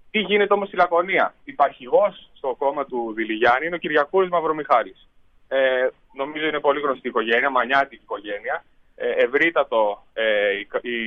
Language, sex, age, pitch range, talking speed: Greek, male, 30-49, 140-205 Hz, 140 wpm